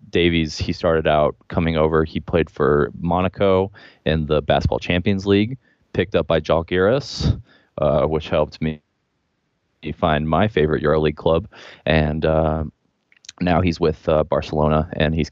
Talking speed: 145 wpm